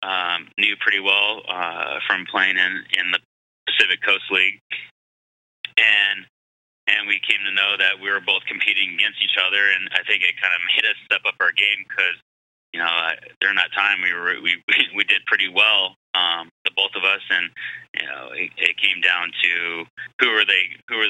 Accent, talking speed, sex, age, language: American, 200 wpm, male, 30-49, English